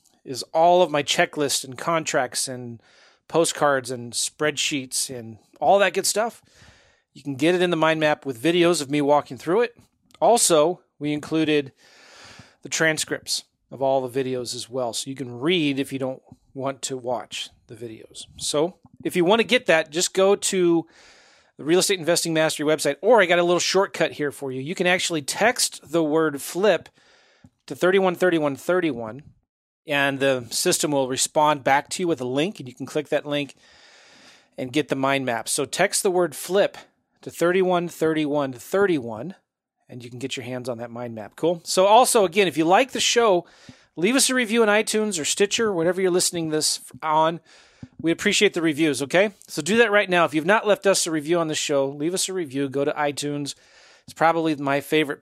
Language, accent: English, American